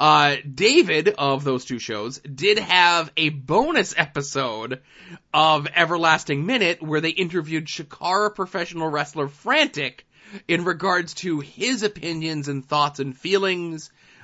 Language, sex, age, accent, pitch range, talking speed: English, male, 20-39, American, 140-175 Hz, 125 wpm